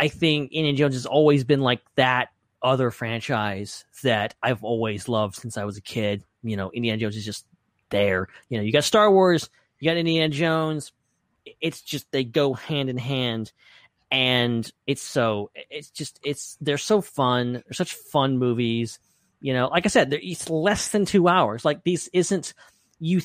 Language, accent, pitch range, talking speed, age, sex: English, American, 125-175 Hz, 185 wpm, 30-49, male